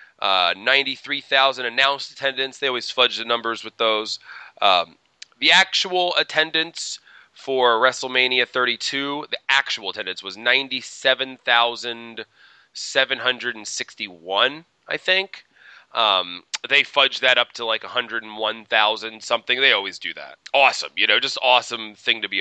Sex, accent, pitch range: male, American, 110-135 Hz